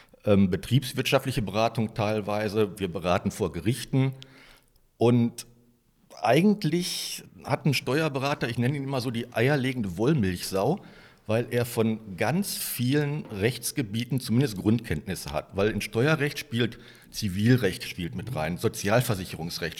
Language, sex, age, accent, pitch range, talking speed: German, male, 50-69, German, 105-135 Hz, 115 wpm